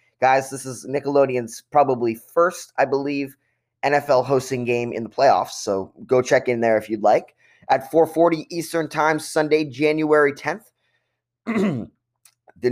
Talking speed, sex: 140 wpm, male